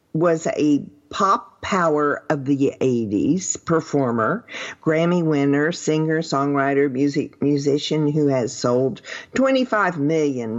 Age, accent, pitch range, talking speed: 50-69, American, 140-185 Hz, 110 wpm